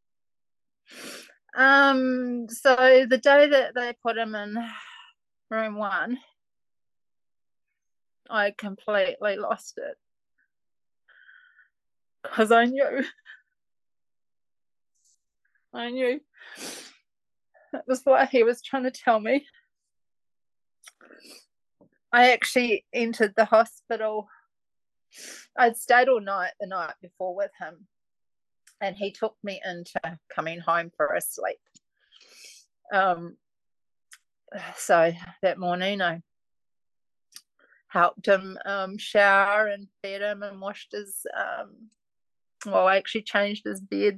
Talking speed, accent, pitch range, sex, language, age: 100 wpm, Australian, 200-255 Hz, female, English, 30-49